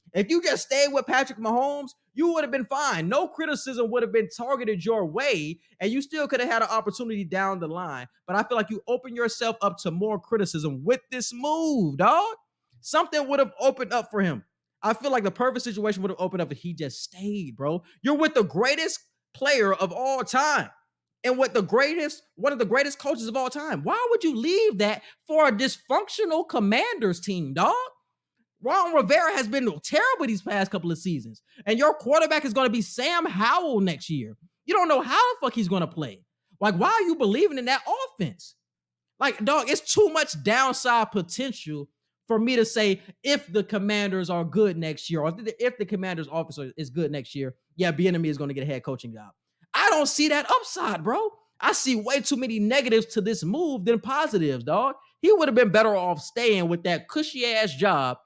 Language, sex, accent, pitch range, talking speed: English, male, American, 185-275 Hz, 210 wpm